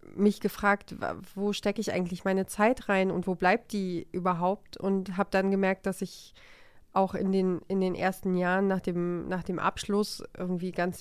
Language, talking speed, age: German, 175 wpm, 30-49